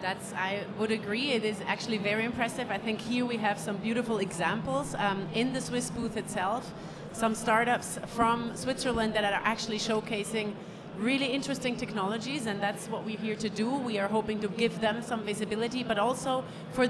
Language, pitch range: English, 195-235 Hz